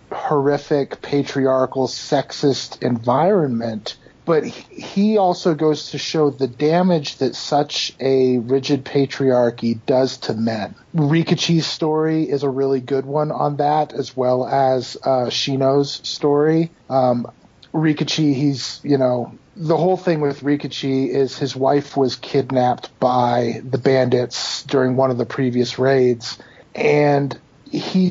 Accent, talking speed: American, 130 wpm